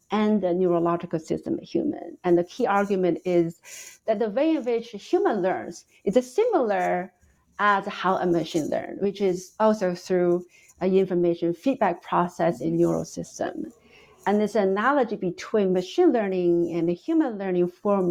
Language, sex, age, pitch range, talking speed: English, female, 50-69, 175-230 Hz, 160 wpm